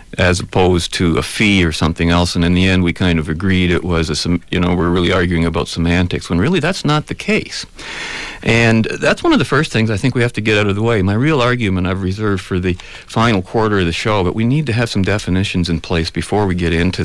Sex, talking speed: male, 255 wpm